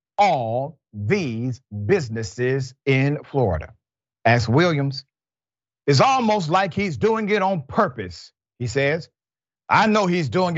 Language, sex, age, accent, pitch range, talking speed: English, male, 40-59, American, 115-165 Hz, 120 wpm